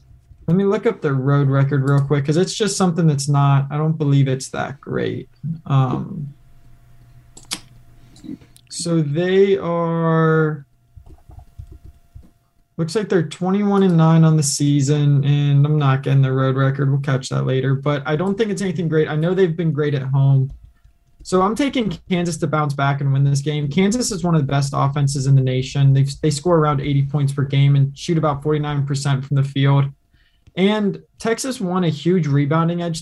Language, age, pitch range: English, 20-39, 140-175 Hz